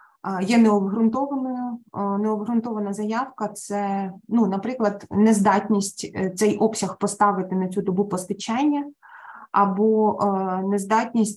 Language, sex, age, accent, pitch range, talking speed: Ukrainian, female, 20-39, native, 190-220 Hz, 90 wpm